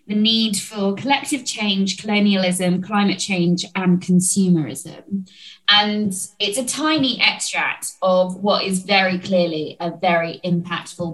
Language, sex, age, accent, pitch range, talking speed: English, female, 20-39, British, 180-205 Hz, 125 wpm